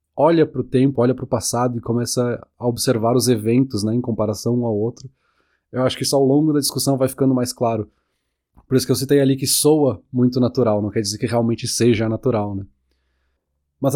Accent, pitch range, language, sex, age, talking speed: Brazilian, 120-140 Hz, Portuguese, male, 20-39, 220 wpm